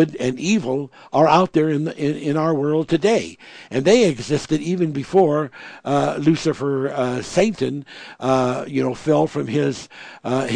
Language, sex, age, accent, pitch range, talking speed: English, male, 60-79, American, 125-150 Hz, 160 wpm